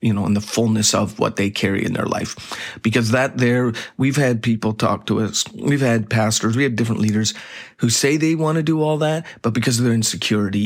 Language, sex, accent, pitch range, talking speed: English, male, American, 110-130 Hz, 230 wpm